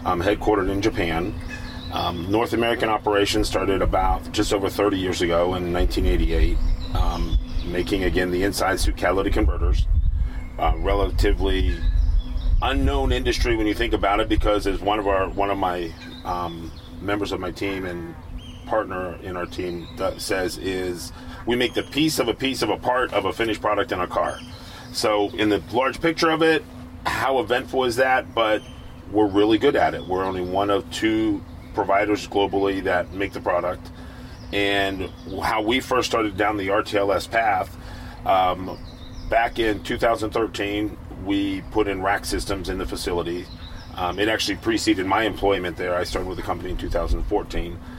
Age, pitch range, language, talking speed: 30-49, 85-105 Hz, English, 170 wpm